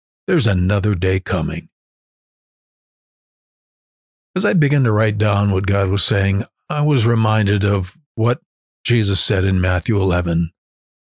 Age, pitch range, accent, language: 50-69, 95-130 Hz, American, English